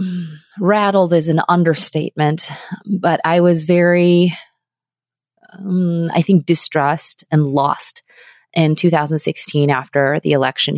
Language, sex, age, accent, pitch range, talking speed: English, female, 30-49, American, 145-175 Hz, 105 wpm